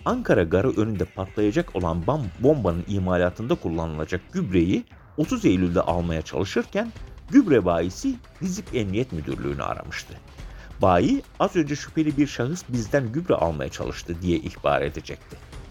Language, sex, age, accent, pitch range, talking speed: Turkish, male, 50-69, native, 90-135 Hz, 120 wpm